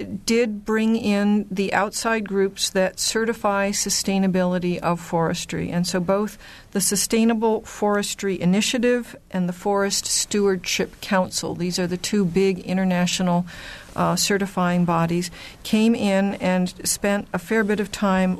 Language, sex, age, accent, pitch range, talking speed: English, female, 50-69, American, 175-200 Hz, 135 wpm